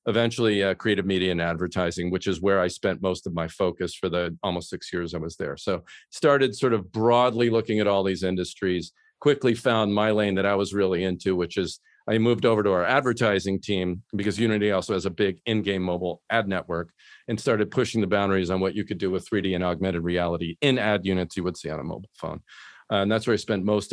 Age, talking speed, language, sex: 40-59, 235 wpm, English, male